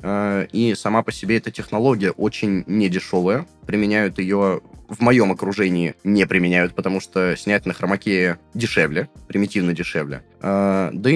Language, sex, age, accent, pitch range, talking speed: Russian, male, 20-39, native, 90-115 Hz, 130 wpm